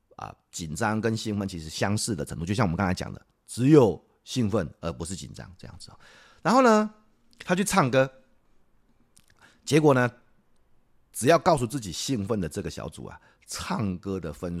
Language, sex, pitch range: Chinese, male, 95-150 Hz